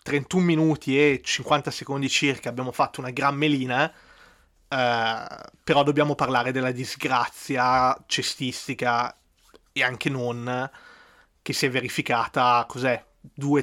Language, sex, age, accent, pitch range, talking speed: Italian, male, 30-49, native, 125-150 Hz, 120 wpm